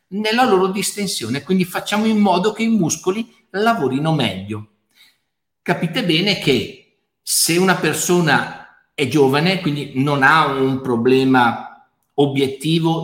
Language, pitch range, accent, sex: Italian, 130-175 Hz, native, male